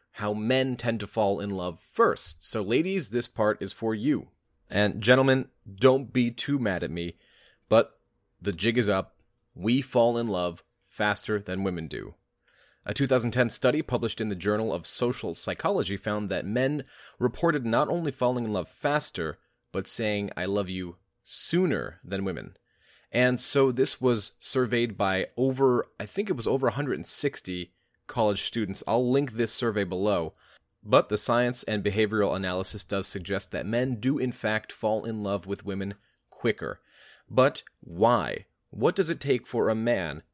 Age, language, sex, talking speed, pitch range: 30-49, English, male, 165 wpm, 100-125 Hz